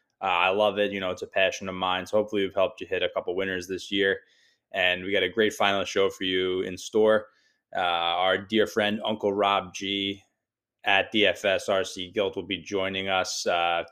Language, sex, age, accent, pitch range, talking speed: English, male, 20-39, American, 95-110 Hz, 210 wpm